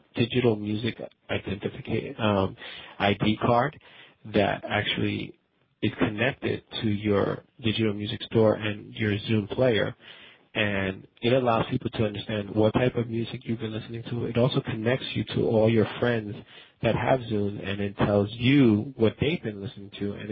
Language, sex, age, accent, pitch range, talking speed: English, male, 40-59, American, 100-115 Hz, 155 wpm